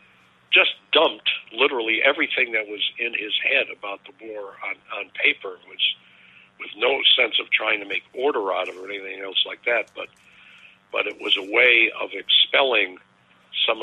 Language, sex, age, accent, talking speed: English, male, 50-69, American, 180 wpm